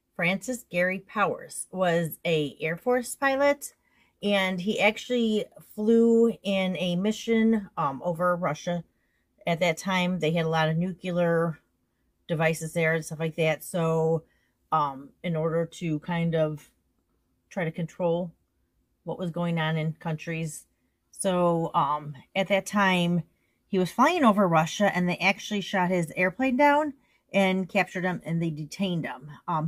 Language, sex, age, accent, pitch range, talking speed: English, female, 30-49, American, 165-195 Hz, 150 wpm